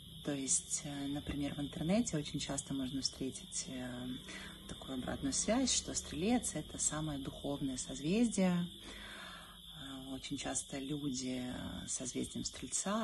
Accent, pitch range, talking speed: native, 140-180 Hz, 110 wpm